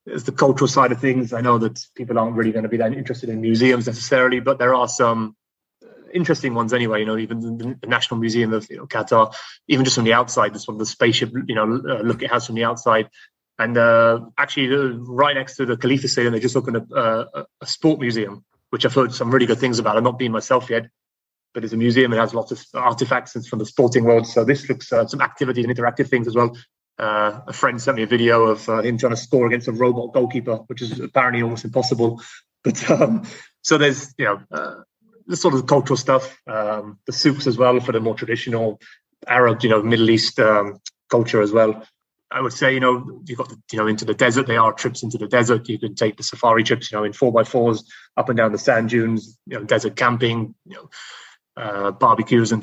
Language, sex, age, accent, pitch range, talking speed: English, male, 30-49, British, 115-125 Hz, 235 wpm